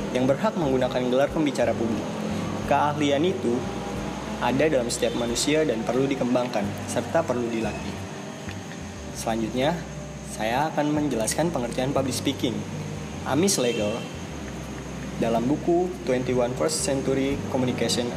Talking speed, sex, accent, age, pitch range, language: 105 wpm, male, native, 20-39, 115-150 Hz, Indonesian